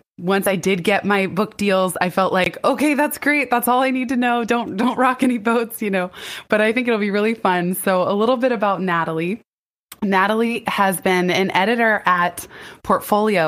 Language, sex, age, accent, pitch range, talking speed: English, female, 20-39, American, 170-205 Hz, 205 wpm